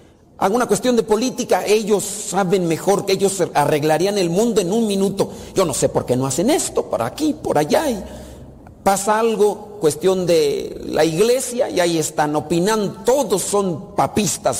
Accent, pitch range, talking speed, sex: Mexican, 150-210 Hz, 170 wpm, male